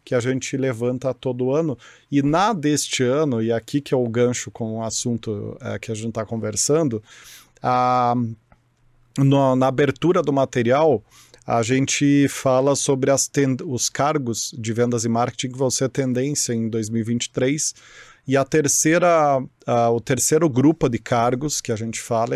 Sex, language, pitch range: male, Portuguese, 120-140 Hz